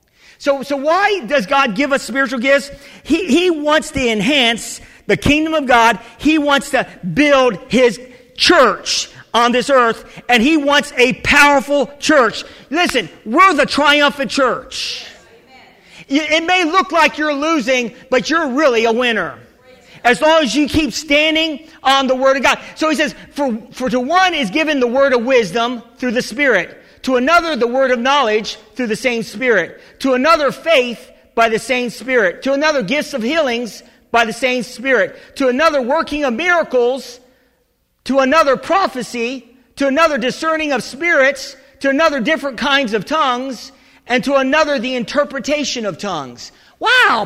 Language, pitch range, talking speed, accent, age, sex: English, 245-300 Hz, 165 wpm, American, 50-69, male